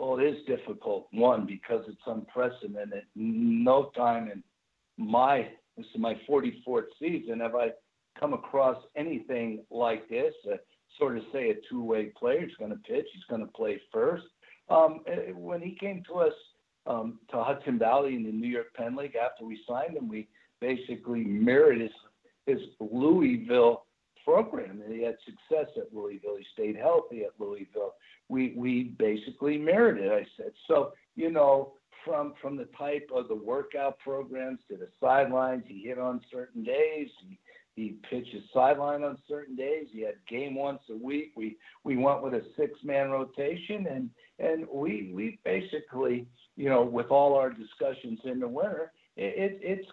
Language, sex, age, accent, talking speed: English, male, 60-79, American, 170 wpm